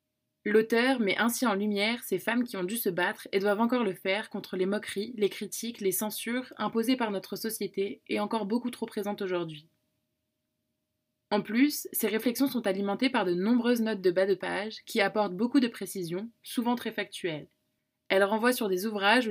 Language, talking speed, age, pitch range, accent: French, 190 wpm, 20-39, 195-235 Hz, French